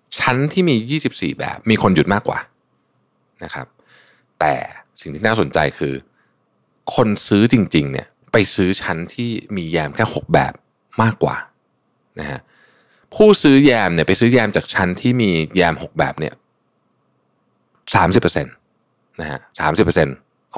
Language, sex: Thai, male